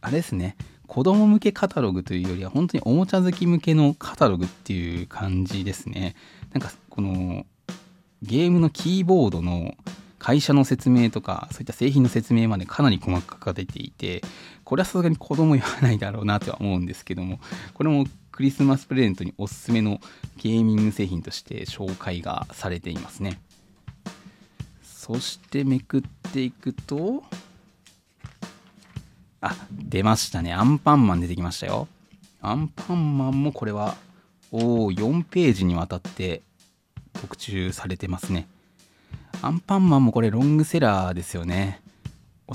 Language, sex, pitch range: Japanese, male, 95-140 Hz